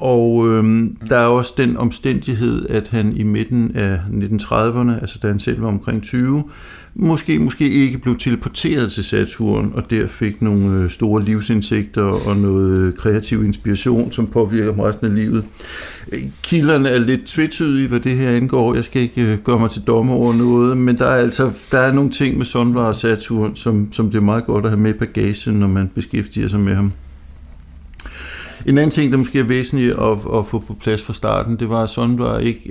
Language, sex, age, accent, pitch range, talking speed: Danish, male, 60-79, native, 105-120 Hz, 195 wpm